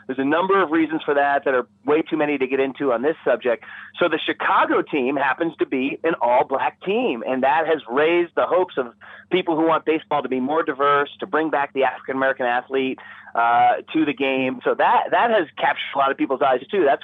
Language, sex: English, male